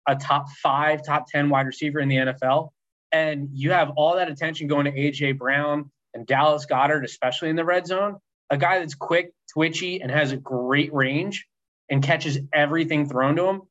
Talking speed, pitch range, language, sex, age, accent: 195 wpm, 130-150 Hz, English, male, 20-39, American